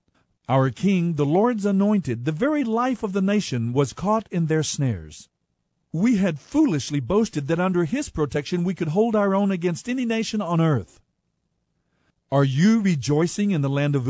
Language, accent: English, American